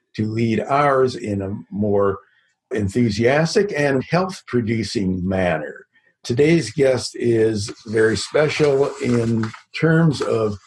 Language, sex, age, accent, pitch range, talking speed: English, male, 60-79, American, 115-145 Hz, 100 wpm